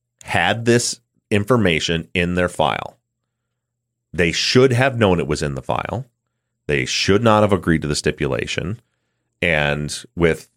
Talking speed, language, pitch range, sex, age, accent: 140 wpm, English, 80-115 Hz, male, 30-49, American